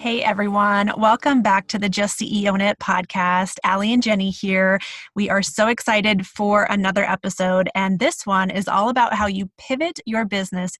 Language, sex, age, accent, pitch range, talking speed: English, female, 20-39, American, 195-230 Hz, 180 wpm